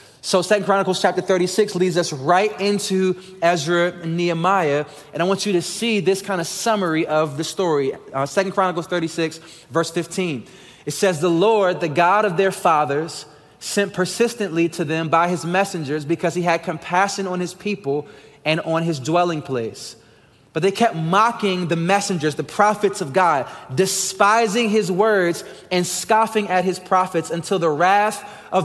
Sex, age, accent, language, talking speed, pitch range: male, 20-39, American, English, 170 wpm, 165-200 Hz